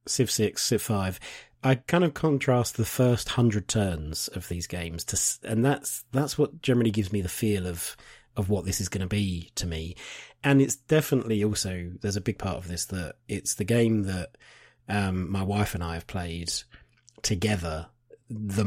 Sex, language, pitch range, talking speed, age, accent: male, English, 90-120 Hz, 190 wpm, 30-49, British